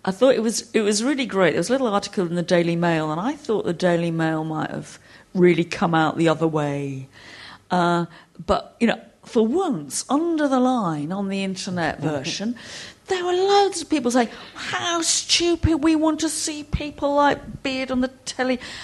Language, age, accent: English, 50-69, British